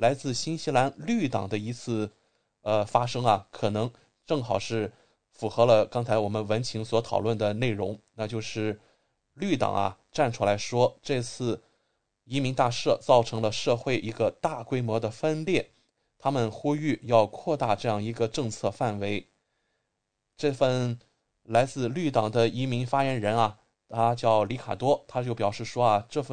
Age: 20-39